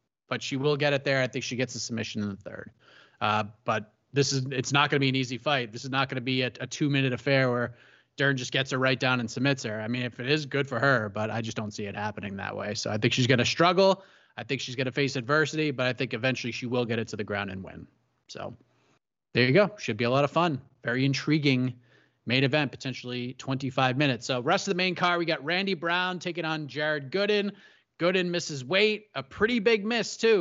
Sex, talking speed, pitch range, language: male, 260 wpm, 130-165 Hz, English